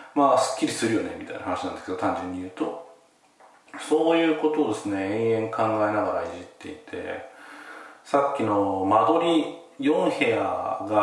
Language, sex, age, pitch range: Japanese, male, 40-59, 120-180 Hz